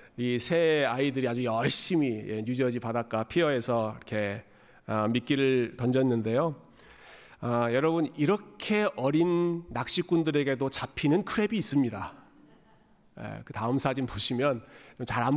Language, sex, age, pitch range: Korean, male, 40-59, 120-155 Hz